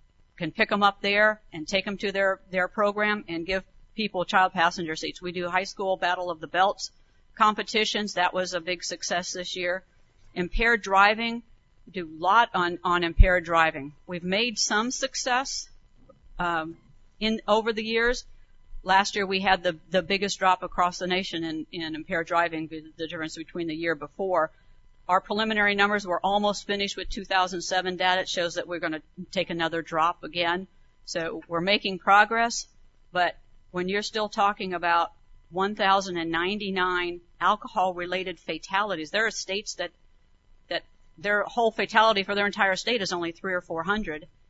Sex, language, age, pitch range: female, English, 50-69, 165-200 Hz